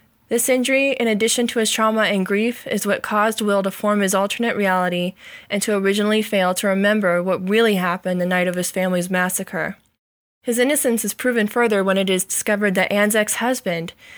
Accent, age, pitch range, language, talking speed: American, 20-39, 190-225 Hz, English, 190 wpm